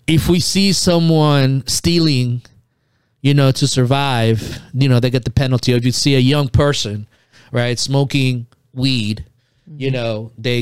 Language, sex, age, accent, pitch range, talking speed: English, male, 30-49, American, 120-140 Hz, 155 wpm